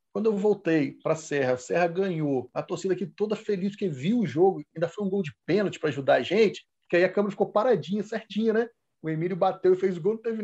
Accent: Brazilian